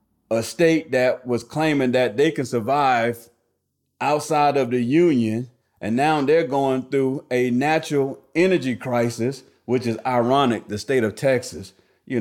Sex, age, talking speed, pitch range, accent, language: male, 40-59, 145 wpm, 120-185 Hz, American, English